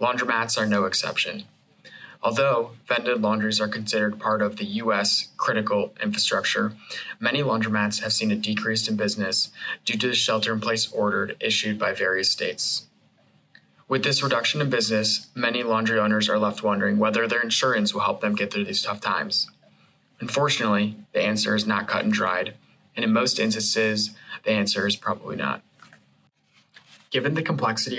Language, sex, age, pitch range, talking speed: English, male, 20-39, 105-145 Hz, 160 wpm